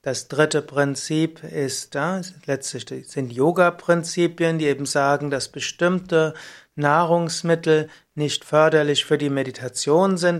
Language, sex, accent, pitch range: German, male, German, 140-175 Hz